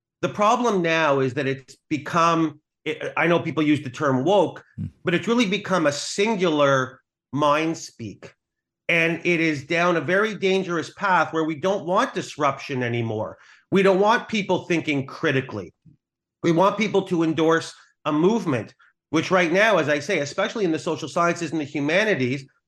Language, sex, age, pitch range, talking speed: English, male, 40-59, 145-185 Hz, 165 wpm